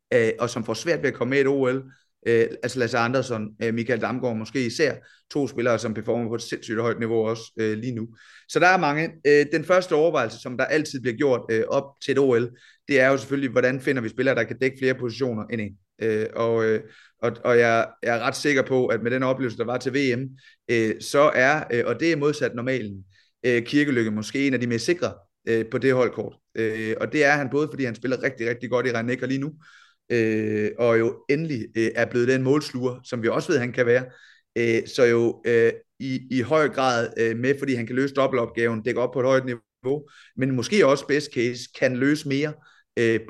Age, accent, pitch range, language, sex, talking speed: 30-49, native, 115-135 Hz, Danish, male, 215 wpm